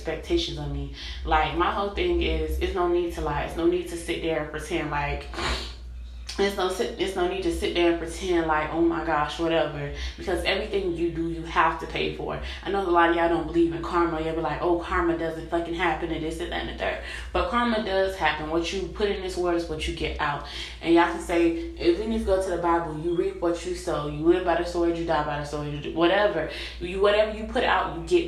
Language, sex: English, female